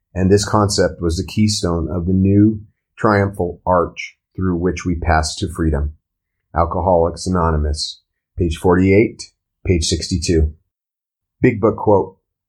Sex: male